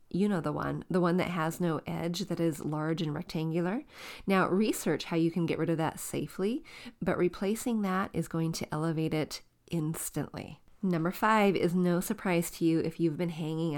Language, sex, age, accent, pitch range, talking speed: English, female, 30-49, American, 160-200 Hz, 195 wpm